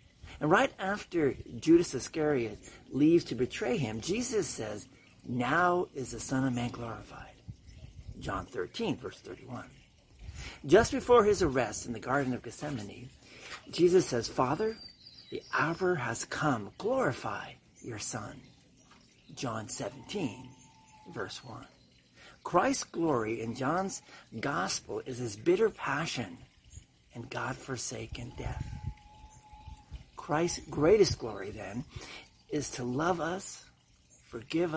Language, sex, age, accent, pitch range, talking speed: English, male, 50-69, American, 120-175 Hz, 115 wpm